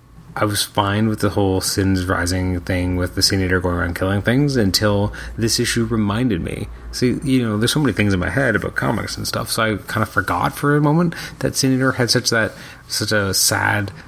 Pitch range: 90-110 Hz